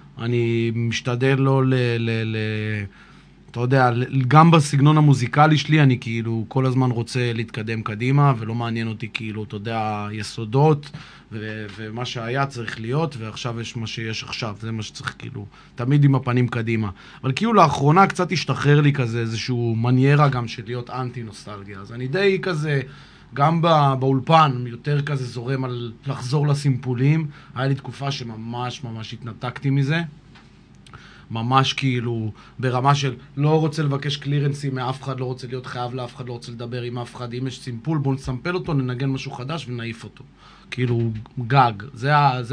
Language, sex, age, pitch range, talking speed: Hebrew, male, 20-39, 120-135 Hz, 160 wpm